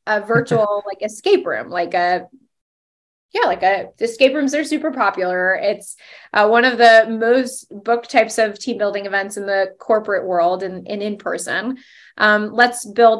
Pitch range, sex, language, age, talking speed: 200-245 Hz, female, English, 20-39, 175 wpm